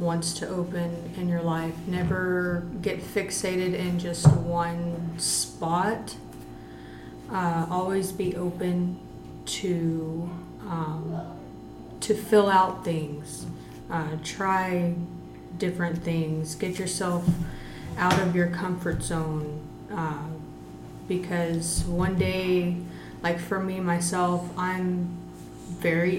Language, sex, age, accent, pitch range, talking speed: English, female, 30-49, American, 155-180 Hz, 100 wpm